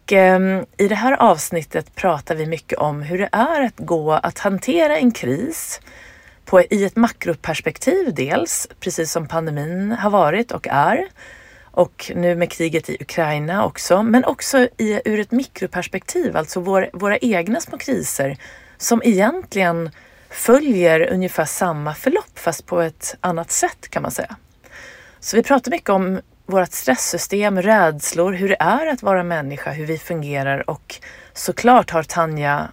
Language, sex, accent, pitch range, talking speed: Swedish, female, native, 155-210 Hz, 145 wpm